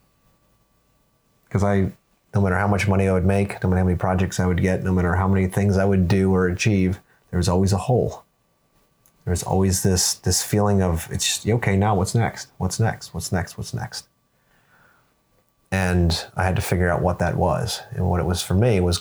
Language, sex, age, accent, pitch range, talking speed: English, male, 30-49, American, 90-100 Hz, 210 wpm